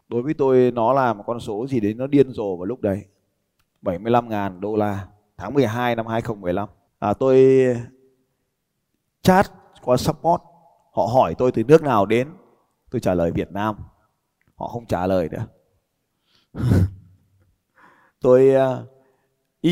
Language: Vietnamese